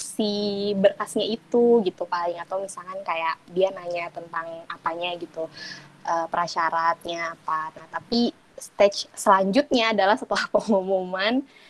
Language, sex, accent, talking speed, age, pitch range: Indonesian, female, native, 120 wpm, 20-39, 190-225 Hz